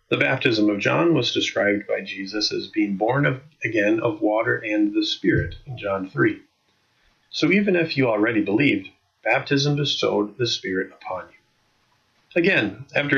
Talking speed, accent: 155 wpm, American